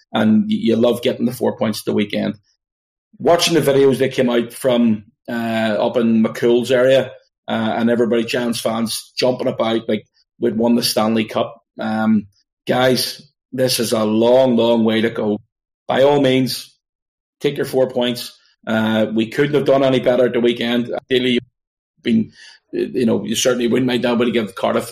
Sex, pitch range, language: male, 115-130 Hz, English